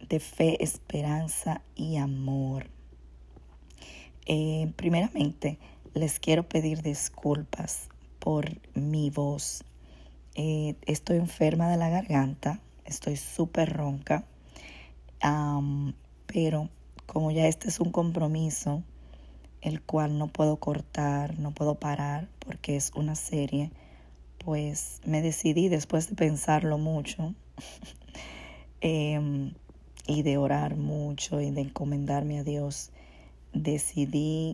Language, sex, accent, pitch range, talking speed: Spanish, female, American, 140-160 Hz, 105 wpm